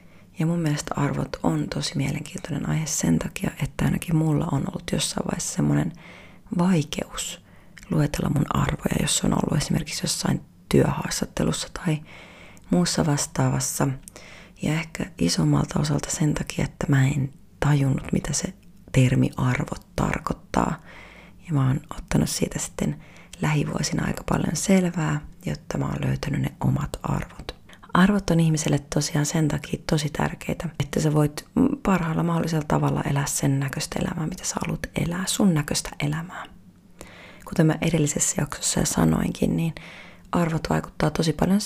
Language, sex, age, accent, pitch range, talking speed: Finnish, female, 30-49, native, 140-175 Hz, 145 wpm